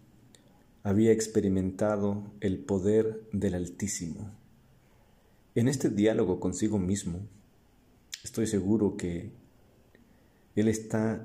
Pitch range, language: 95-115 Hz, Spanish